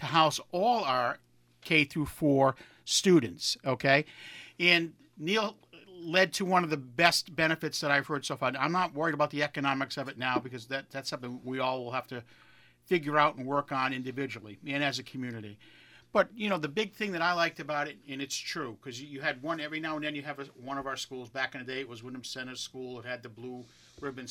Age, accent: 50-69, American